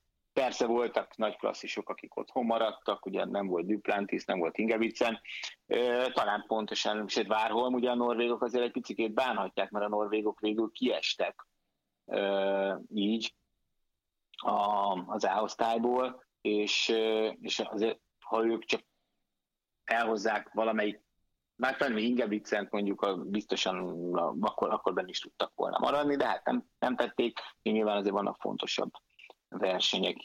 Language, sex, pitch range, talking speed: Hungarian, male, 100-115 Hz, 135 wpm